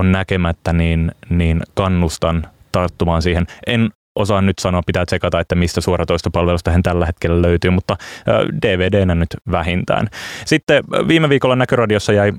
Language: Finnish